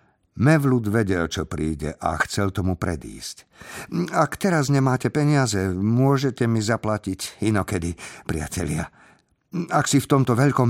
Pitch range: 95-130 Hz